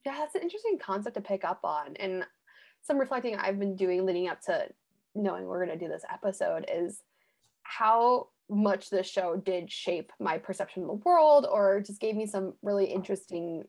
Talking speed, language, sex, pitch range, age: 195 wpm, English, female, 185-245 Hz, 20-39